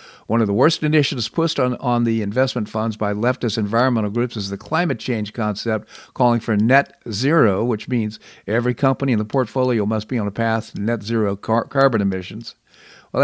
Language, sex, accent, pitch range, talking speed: English, male, American, 110-135 Hz, 190 wpm